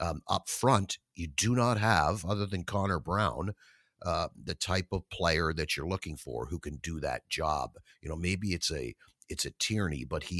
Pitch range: 85-100 Hz